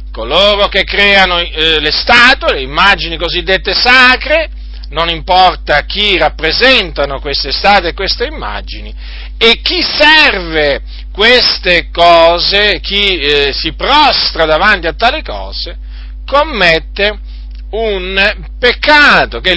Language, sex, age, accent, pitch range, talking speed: Italian, male, 50-69, native, 130-210 Hz, 115 wpm